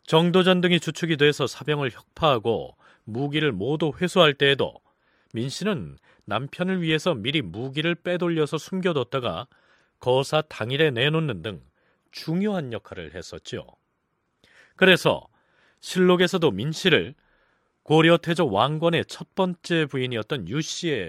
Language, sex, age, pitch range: Korean, male, 40-59, 120-170 Hz